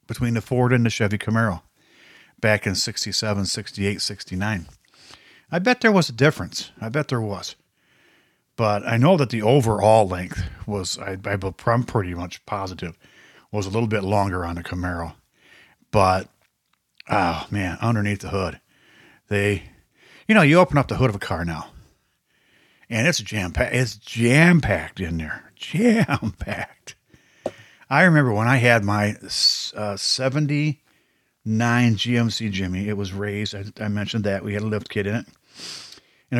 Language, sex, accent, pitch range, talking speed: English, male, American, 100-125 Hz, 155 wpm